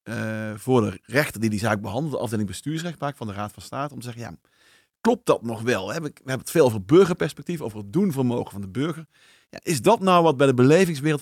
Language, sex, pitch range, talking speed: Dutch, male, 110-150 Hz, 235 wpm